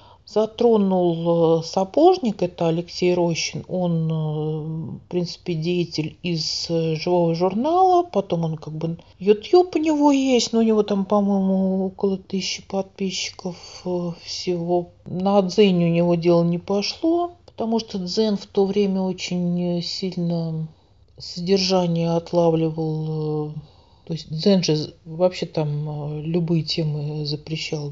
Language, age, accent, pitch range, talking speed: Russian, 50-69, native, 160-200 Hz, 120 wpm